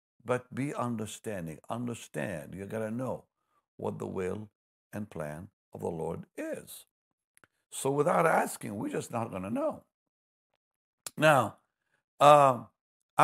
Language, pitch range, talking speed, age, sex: English, 90-135 Hz, 125 wpm, 60-79, male